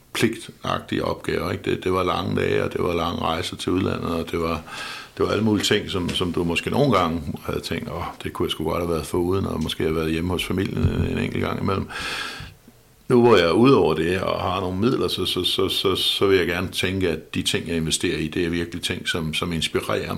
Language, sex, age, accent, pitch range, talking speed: Danish, male, 60-79, native, 80-95 Hz, 245 wpm